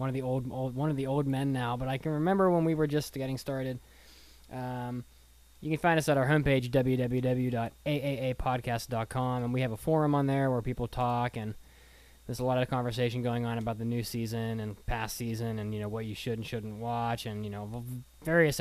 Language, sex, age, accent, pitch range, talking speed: English, male, 20-39, American, 115-135 Hz, 220 wpm